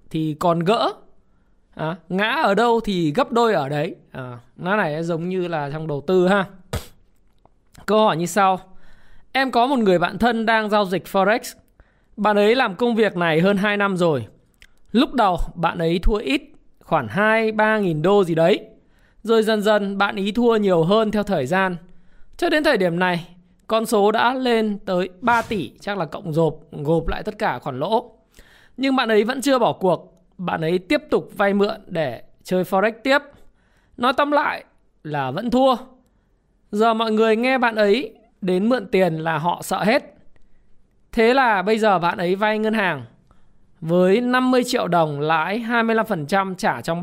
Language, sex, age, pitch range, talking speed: Vietnamese, male, 20-39, 175-225 Hz, 185 wpm